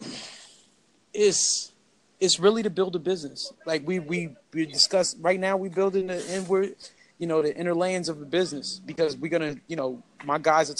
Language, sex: English, male